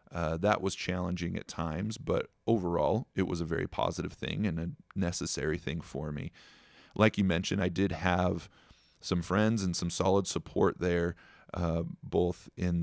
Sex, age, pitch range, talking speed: male, 30-49, 85-105 Hz, 170 wpm